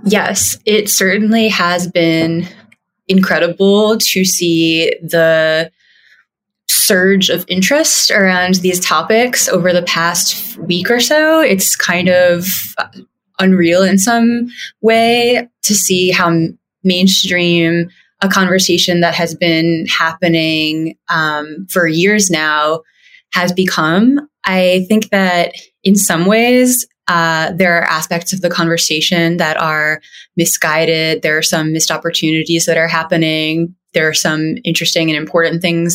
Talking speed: 125 wpm